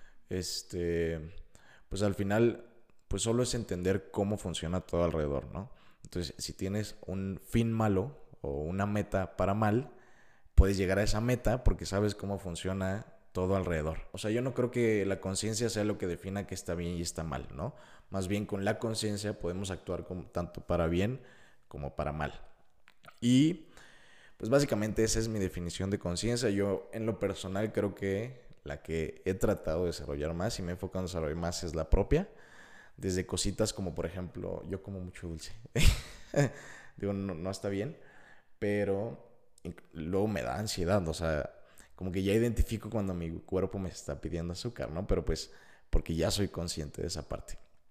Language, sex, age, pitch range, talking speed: Spanish, male, 20-39, 85-105 Hz, 180 wpm